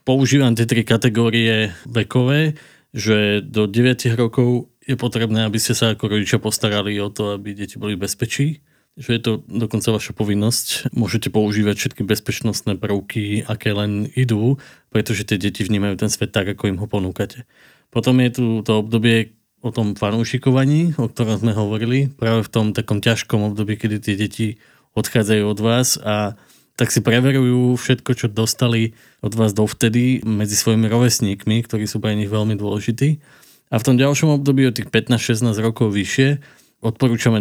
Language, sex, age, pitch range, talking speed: Slovak, male, 20-39, 105-125 Hz, 165 wpm